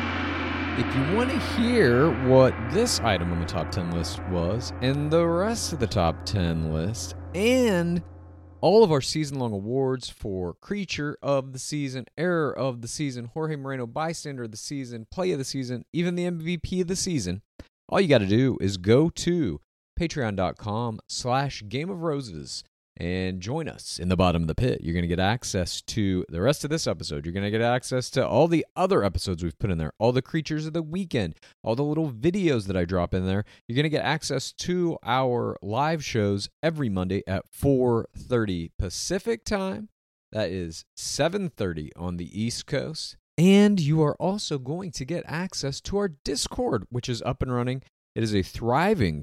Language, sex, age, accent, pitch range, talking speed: English, male, 30-49, American, 95-155 Hz, 190 wpm